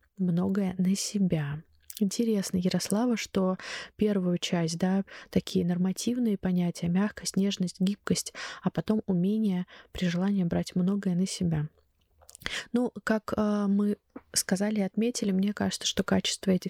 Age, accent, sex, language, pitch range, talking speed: 20-39, native, female, Russian, 185-205 Hz, 125 wpm